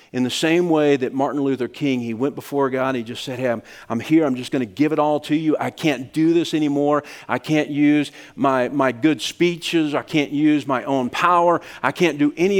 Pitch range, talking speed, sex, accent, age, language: 130-175 Hz, 240 wpm, male, American, 50-69, English